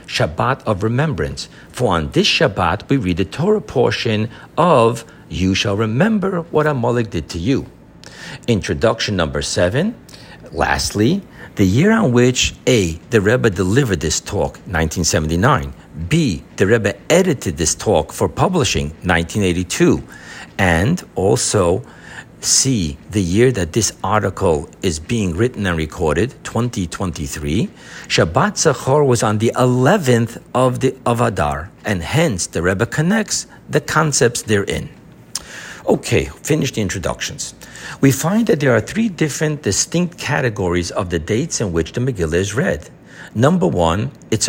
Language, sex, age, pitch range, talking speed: English, male, 60-79, 95-130 Hz, 135 wpm